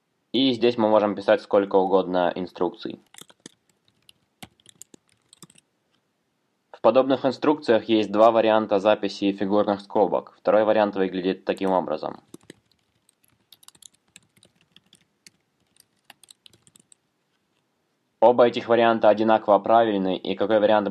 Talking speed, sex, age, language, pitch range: 85 wpm, male, 20-39, Russian, 95-110 Hz